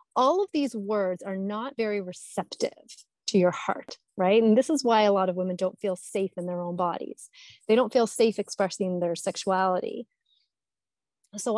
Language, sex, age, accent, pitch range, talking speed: English, female, 30-49, American, 185-230 Hz, 180 wpm